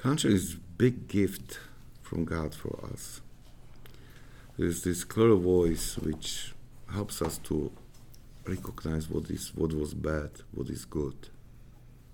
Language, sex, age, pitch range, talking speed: English, male, 60-79, 80-115 Hz, 130 wpm